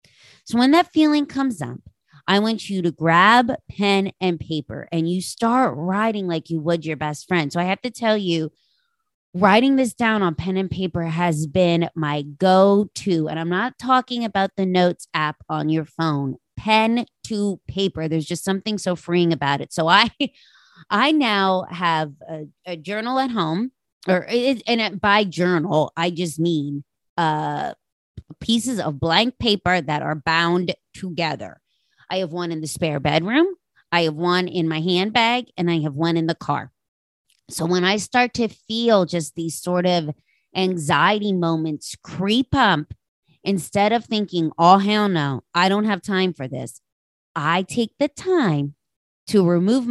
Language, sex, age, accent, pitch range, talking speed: English, female, 20-39, American, 160-210 Hz, 170 wpm